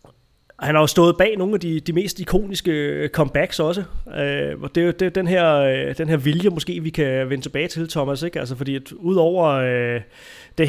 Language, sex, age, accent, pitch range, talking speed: Danish, male, 30-49, native, 130-155 Hz, 210 wpm